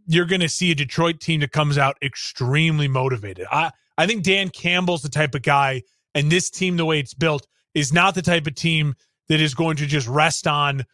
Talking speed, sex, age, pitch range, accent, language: 225 wpm, male, 30-49, 150-180 Hz, American, English